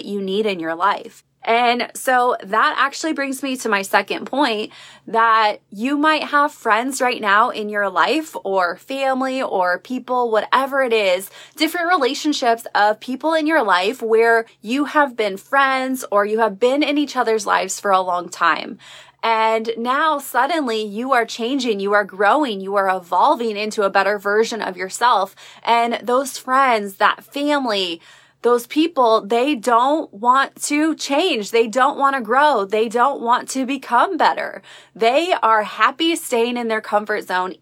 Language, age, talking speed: English, 20-39, 165 wpm